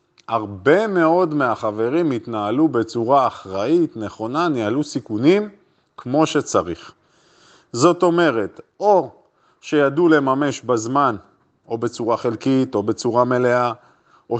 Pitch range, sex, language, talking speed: 130-175 Hz, male, Hebrew, 100 wpm